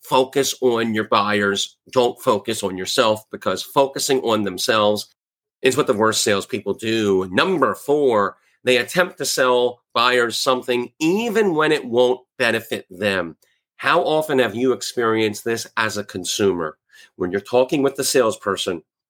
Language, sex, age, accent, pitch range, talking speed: English, male, 40-59, American, 100-135 Hz, 150 wpm